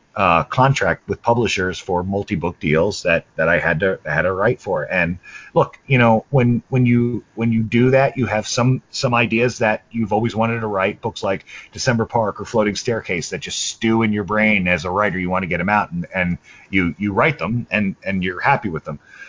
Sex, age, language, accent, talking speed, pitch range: male, 30-49, English, American, 225 wpm, 100-125 Hz